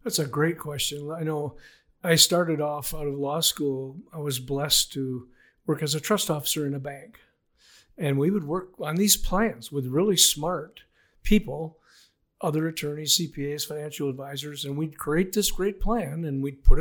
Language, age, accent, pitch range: English, 50-69, American, 145-175 Hz